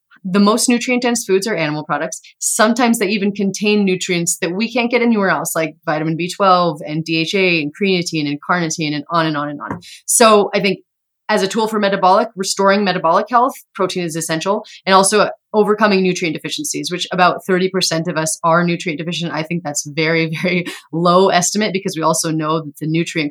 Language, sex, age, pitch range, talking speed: English, female, 30-49, 160-195 Hz, 190 wpm